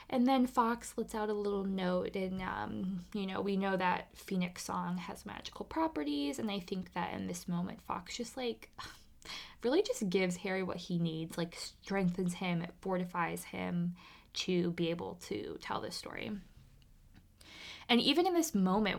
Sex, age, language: female, 20-39, English